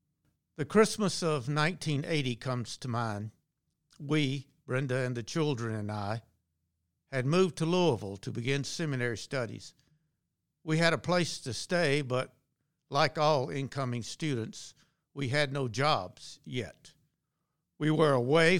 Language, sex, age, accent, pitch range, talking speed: English, male, 60-79, American, 120-155 Hz, 130 wpm